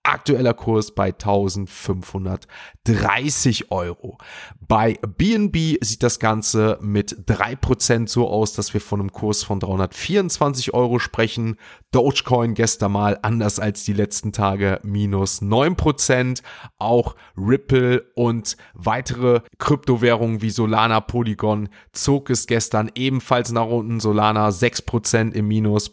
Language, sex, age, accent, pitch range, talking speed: German, male, 30-49, German, 105-125 Hz, 120 wpm